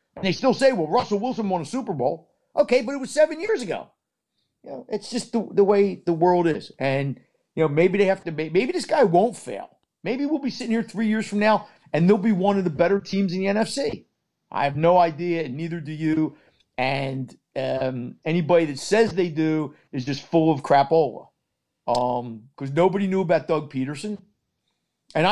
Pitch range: 155-215 Hz